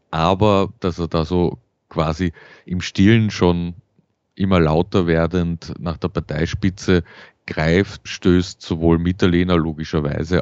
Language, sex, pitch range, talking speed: German, male, 80-95 Hz, 115 wpm